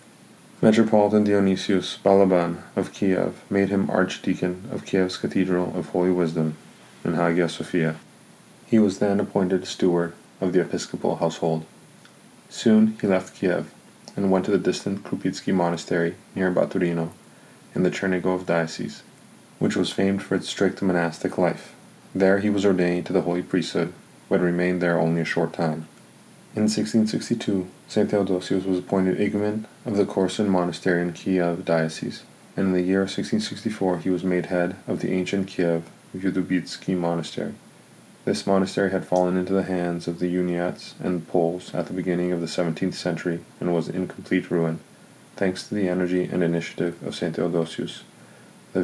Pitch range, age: 85-95 Hz, 30-49